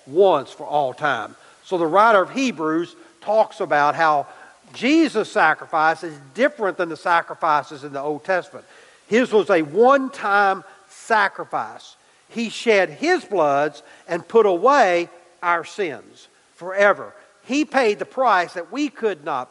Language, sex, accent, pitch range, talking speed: English, male, American, 160-225 Hz, 140 wpm